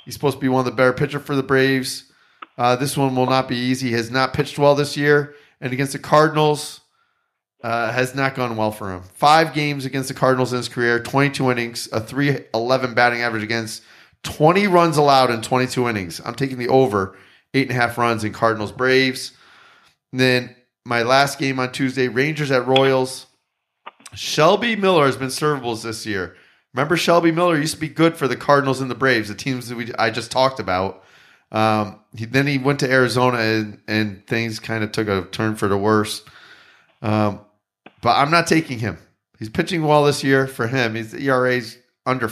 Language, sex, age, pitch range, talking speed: English, male, 30-49, 120-145 Hz, 195 wpm